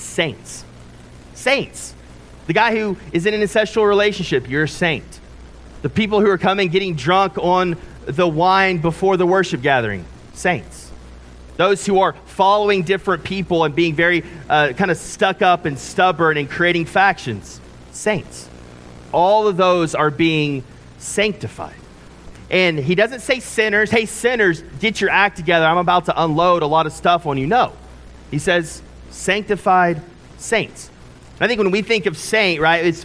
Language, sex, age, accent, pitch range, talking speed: English, male, 30-49, American, 135-180 Hz, 160 wpm